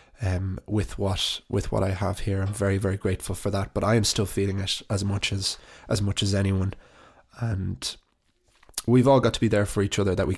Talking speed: 225 wpm